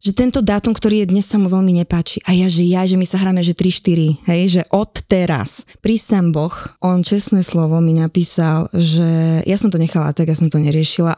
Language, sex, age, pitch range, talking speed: Slovak, female, 20-39, 165-195 Hz, 220 wpm